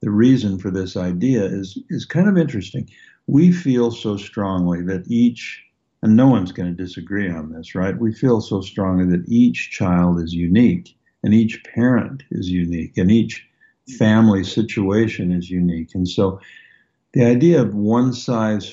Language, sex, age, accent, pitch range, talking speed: English, male, 60-79, American, 95-120 Hz, 165 wpm